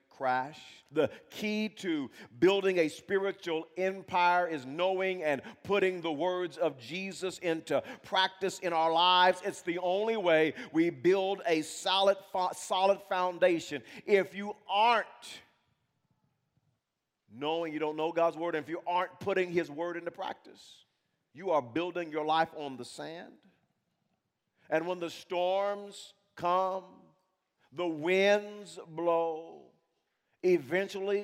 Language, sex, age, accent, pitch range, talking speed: English, male, 50-69, American, 150-190 Hz, 130 wpm